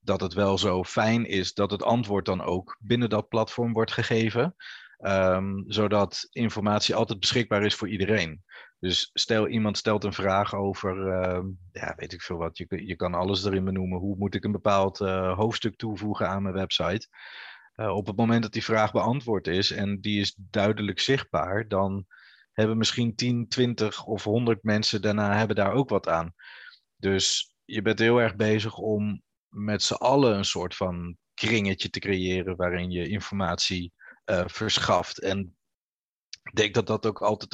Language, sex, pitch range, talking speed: Dutch, male, 95-110 Hz, 175 wpm